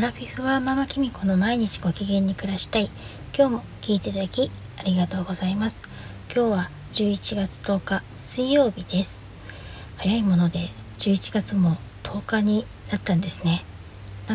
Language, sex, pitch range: Japanese, female, 170-205 Hz